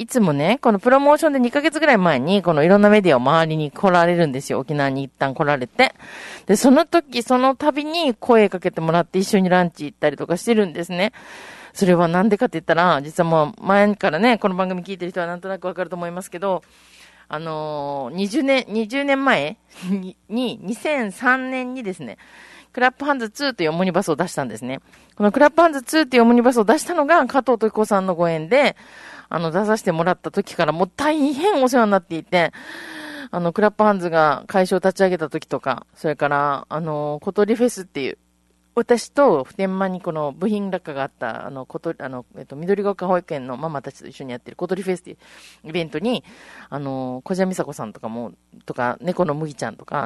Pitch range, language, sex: 160-235 Hz, Japanese, female